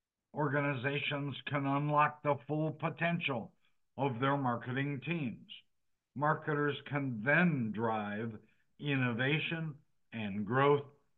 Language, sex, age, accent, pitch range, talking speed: English, male, 60-79, American, 115-145 Hz, 90 wpm